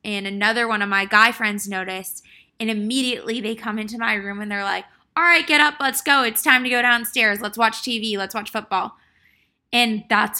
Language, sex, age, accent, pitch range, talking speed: English, female, 20-39, American, 195-230 Hz, 215 wpm